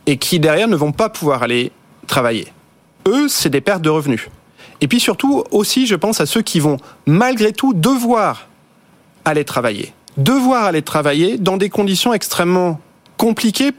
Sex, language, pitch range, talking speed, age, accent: male, French, 145-205 Hz, 165 wpm, 30-49, French